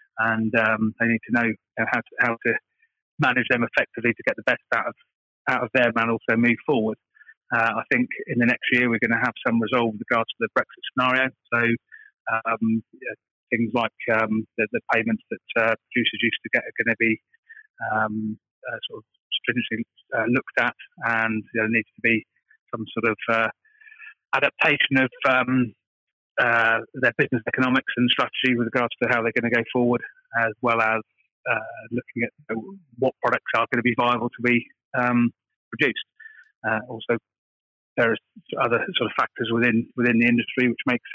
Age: 30-49